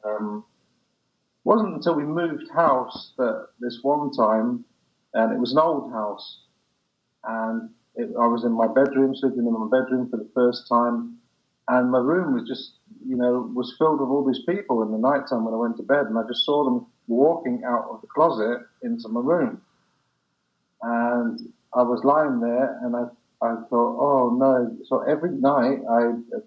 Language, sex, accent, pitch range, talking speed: English, male, British, 120-145 Hz, 185 wpm